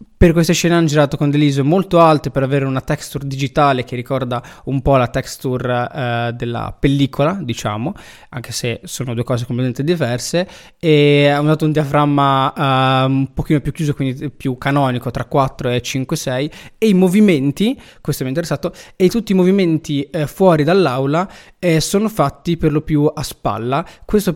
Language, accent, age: Italian, native, 20-39